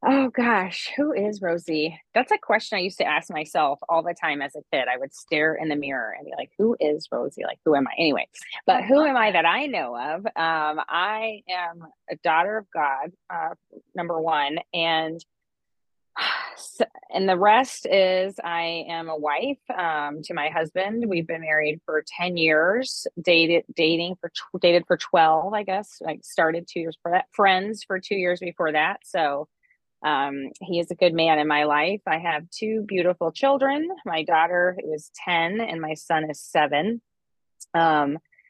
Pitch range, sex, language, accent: 155-190 Hz, female, English, American